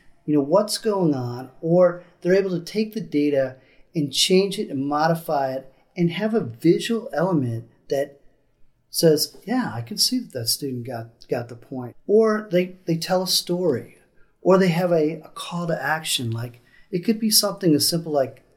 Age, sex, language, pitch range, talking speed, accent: 40-59, male, English, 135-185 Hz, 185 wpm, American